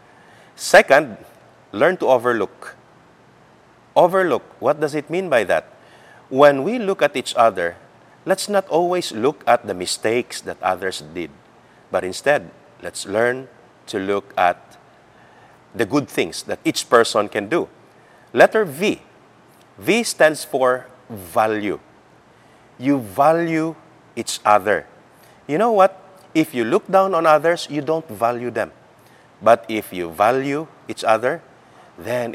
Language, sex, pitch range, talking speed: English, male, 110-155 Hz, 135 wpm